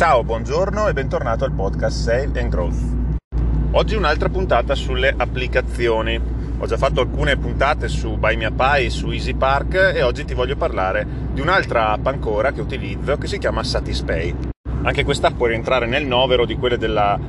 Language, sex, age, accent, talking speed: Italian, male, 30-49, native, 165 wpm